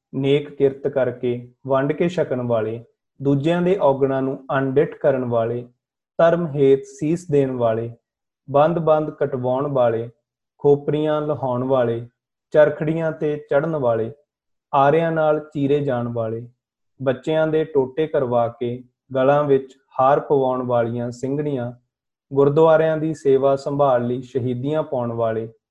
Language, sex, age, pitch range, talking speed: Punjabi, male, 30-49, 125-150 Hz, 105 wpm